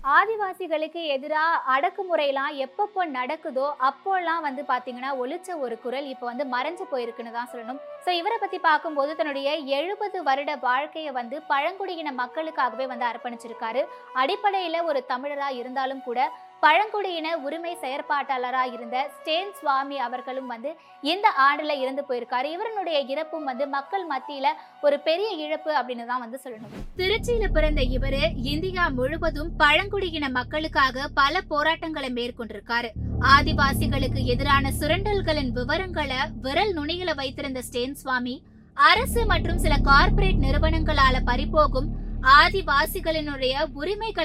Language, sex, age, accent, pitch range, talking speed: Tamil, female, 20-39, native, 265-330 Hz, 80 wpm